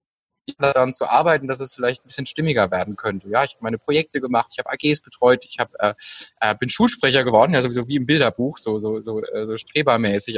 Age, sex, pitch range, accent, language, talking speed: 20-39, male, 110-145 Hz, German, German, 225 wpm